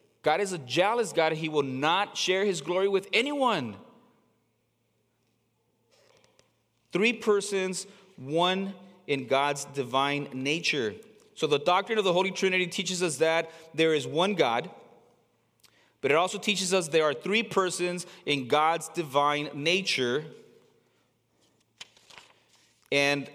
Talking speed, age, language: 125 wpm, 30-49, English